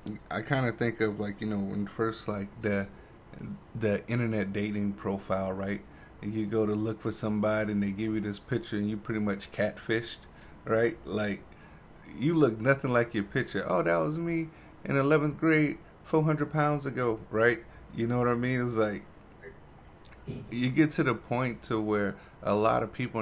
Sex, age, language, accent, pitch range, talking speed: male, 30-49, English, American, 100-120 Hz, 185 wpm